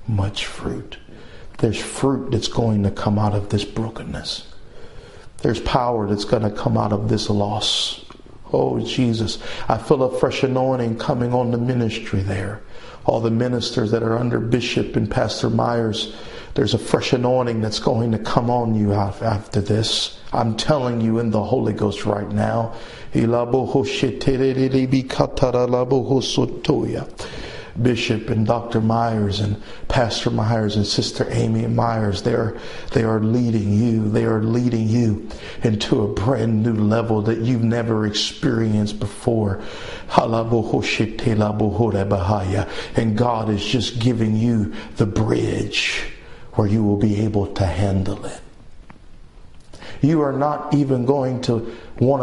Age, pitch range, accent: 50-69, 105-120 Hz, American